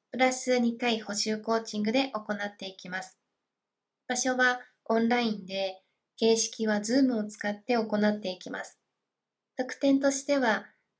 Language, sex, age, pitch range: Japanese, female, 20-39, 210-245 Hz